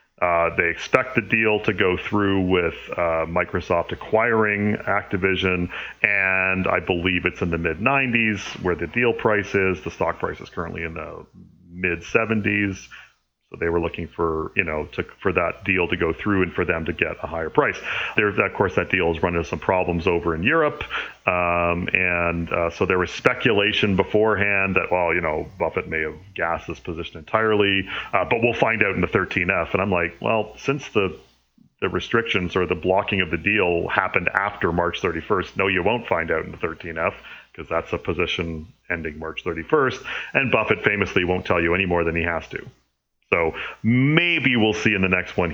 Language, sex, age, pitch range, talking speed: English, male, 40-59, 85-105 Hz, 195 wpm